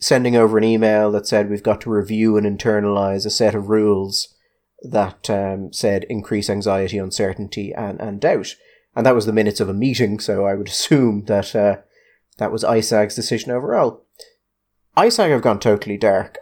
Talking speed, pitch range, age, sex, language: 180 wpm, 100-120 Hz, 30-49, male, English